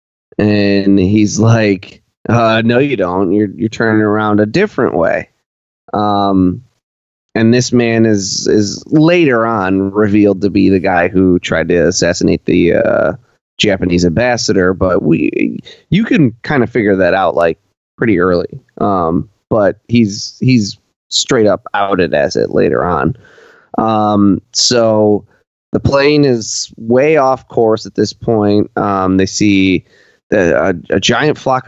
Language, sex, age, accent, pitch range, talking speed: English, male, 20-39, American, 100-120 Hz, 145 wpm